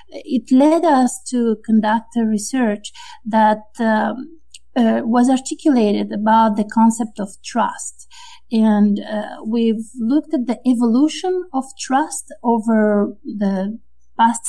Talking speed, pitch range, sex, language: 120 wpm, 210-260 Hz, female, English